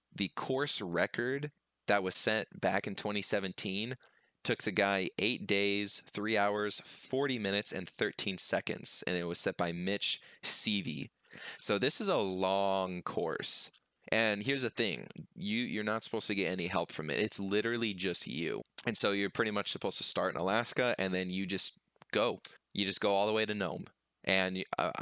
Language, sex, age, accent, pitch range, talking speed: English, male, 20-39, American, 90-105 Hz, 180 wpm